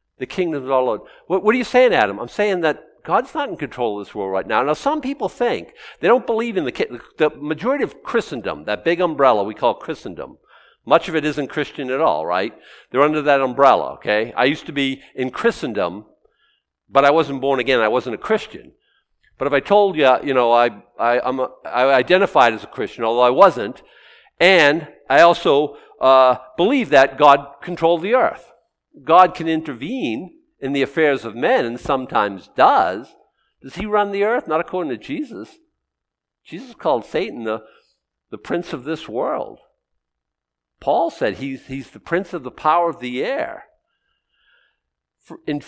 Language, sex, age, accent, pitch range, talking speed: English, male, 50-69, American, 130-200 Hz, 185 wpm